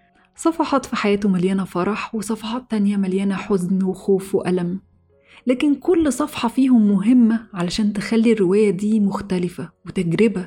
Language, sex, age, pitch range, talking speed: Arabic, female, 20-39, 190-245 Hz, 125 wpm